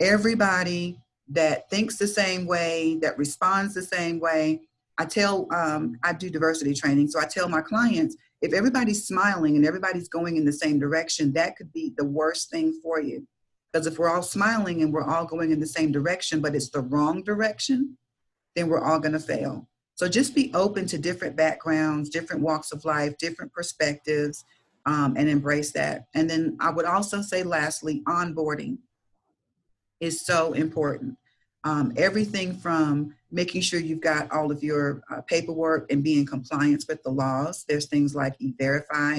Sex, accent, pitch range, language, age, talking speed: female, American, 145-180 Hz, English, 40-59, 180 wpm